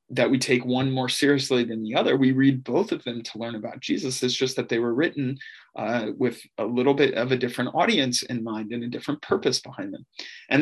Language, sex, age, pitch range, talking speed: English, male, 30-49, 125-140 Hz, 235 wpm